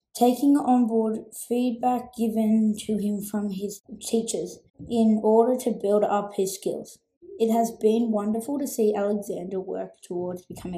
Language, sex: English, female